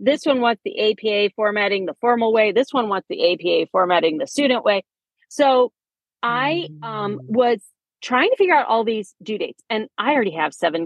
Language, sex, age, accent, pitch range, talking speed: English, female, 40-59, American, 185-245 Hz, 195 wpm